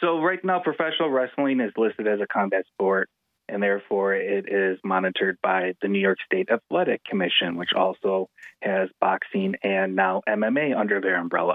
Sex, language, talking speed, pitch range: male, English, 170 wpm, 100-130 Hz